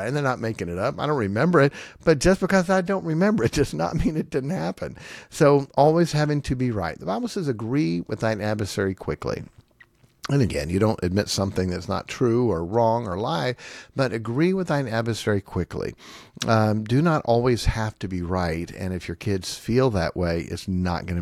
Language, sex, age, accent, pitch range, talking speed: English, male, 50-69, American, 100-140 Hz, 210 wpm